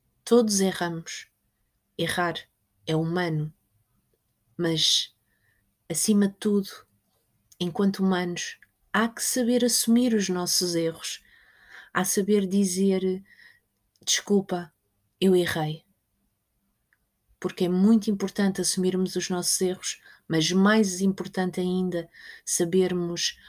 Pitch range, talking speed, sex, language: 170-200 Hz, 95 wpm, female, Portuguese